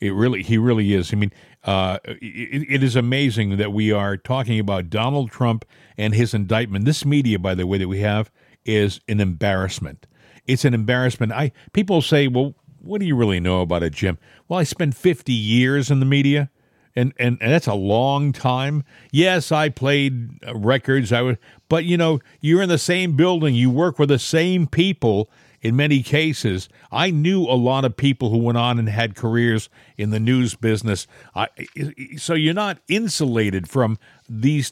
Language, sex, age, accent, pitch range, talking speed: English, male, 50-69, American, 110-145 Hz, 185 wpm